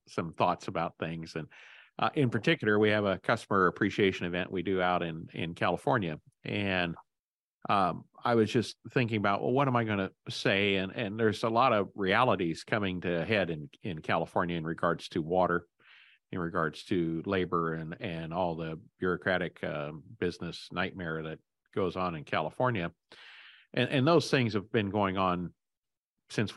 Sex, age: male, 50-69